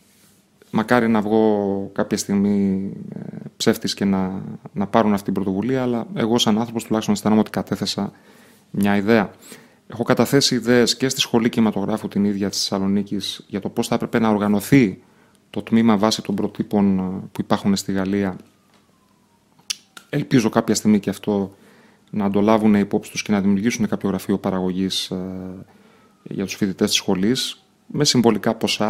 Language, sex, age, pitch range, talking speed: Greek, male, 30-49, 100-115 Hz, 155 wpm